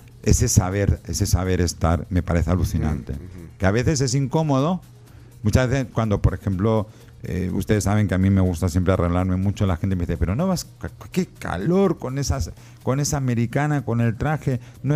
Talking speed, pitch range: 190 wpm, 90-120 Hz